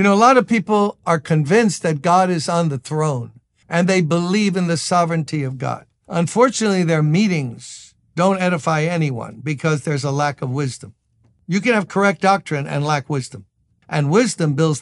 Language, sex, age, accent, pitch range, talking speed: English, male, 60-79, American, 135-175 Hz, 180 wpm